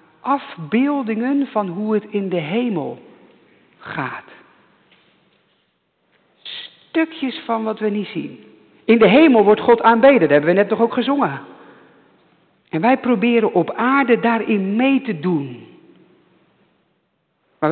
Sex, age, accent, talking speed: male, 50-69, Dutch, 125 wpm